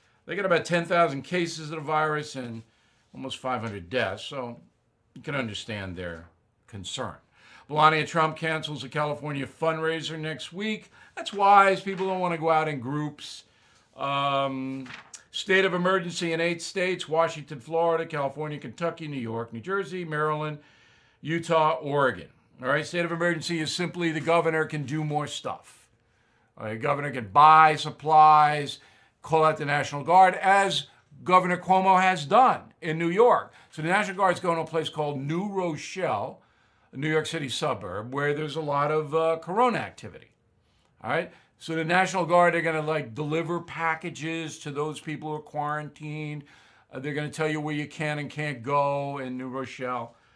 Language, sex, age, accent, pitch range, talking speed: English, male, 50-69, American, 140-170 Hz, 170 wpm